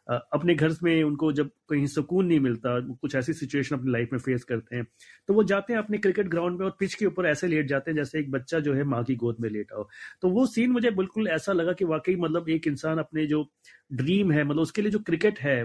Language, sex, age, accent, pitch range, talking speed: Hindi, male, 30-49, native, 130-180 Hz, 255 wpm